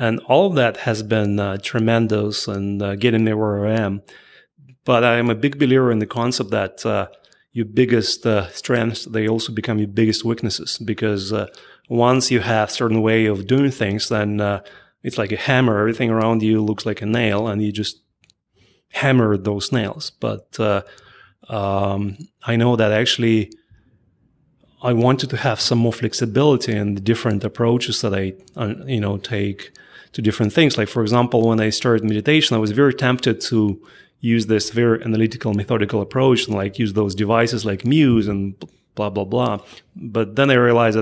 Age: 30-49